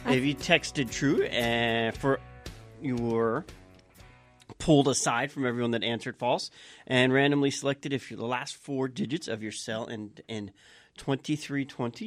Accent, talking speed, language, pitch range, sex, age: American, 160 wpm, English, 110-130 Hz, male, 40-59